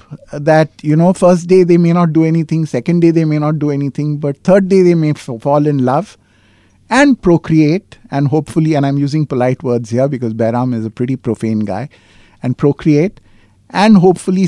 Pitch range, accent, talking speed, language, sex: 115-165 Hz, native, 195 wpm, Hindi, male